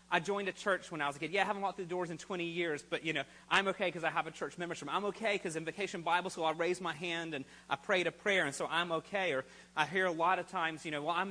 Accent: American